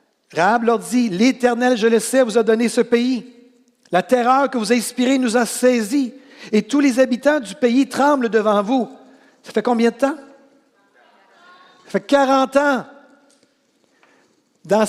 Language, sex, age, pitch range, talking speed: French, male, 60-79, 195-250 Hz, 165 wpm